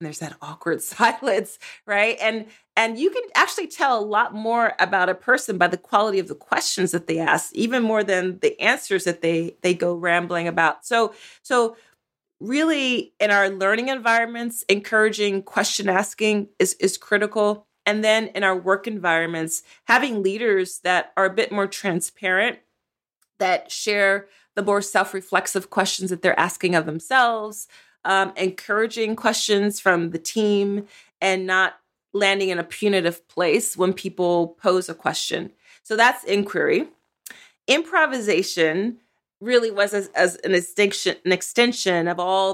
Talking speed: 150 wpm